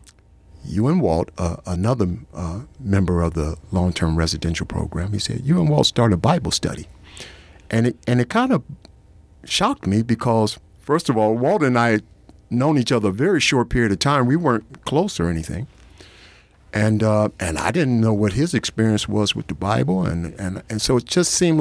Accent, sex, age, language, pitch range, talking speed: American, male, 60-79, English, 85-110 Hz, 195 wpm